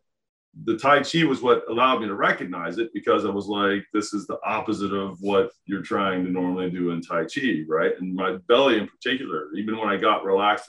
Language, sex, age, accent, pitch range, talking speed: English, male, 40-59, American, 95-115 Hz, 220 wpm